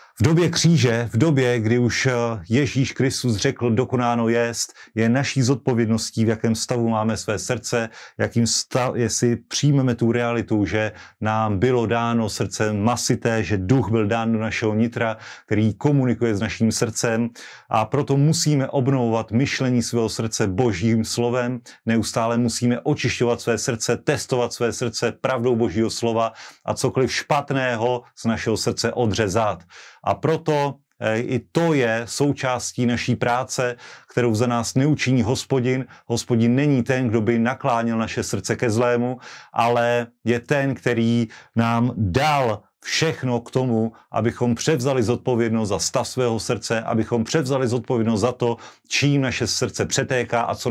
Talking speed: 145 wpm